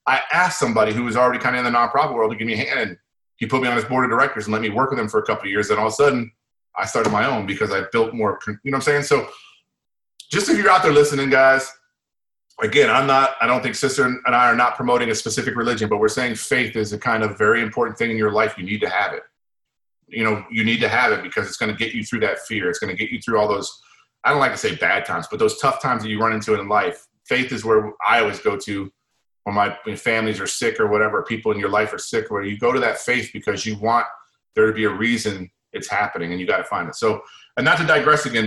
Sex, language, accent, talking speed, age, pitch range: male, English, American, 285 wpm, 30-49, 105-130 Hz